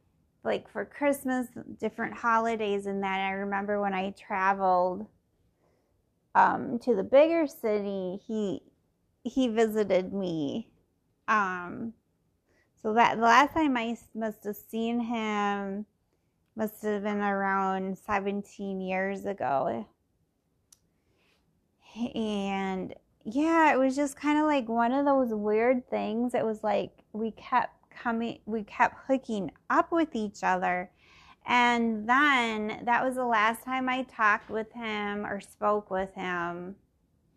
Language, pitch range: English, 195-240 Hz